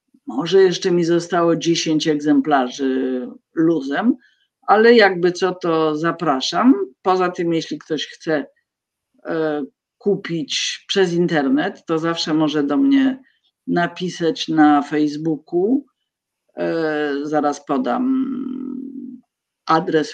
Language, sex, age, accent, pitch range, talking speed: Polish, female, 50-69, native, 155-205 Hz, 90 wpm